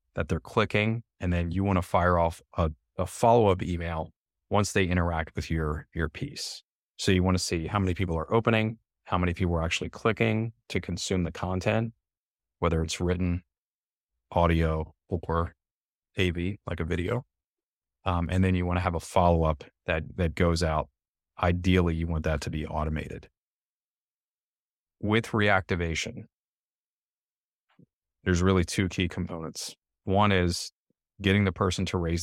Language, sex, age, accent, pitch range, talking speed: English, male, 30-49, American, 85-95 Hz, 155 wpm